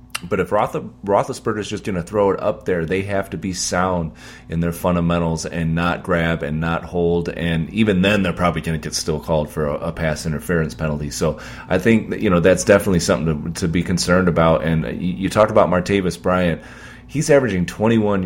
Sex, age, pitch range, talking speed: male, 30-49, 85-100 Hz, 215 wpm